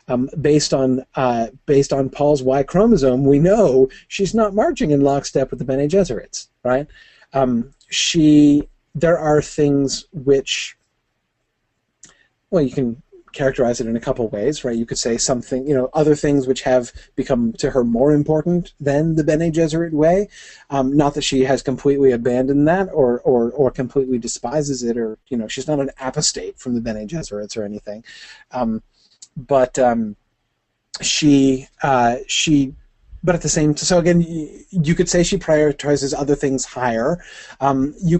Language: English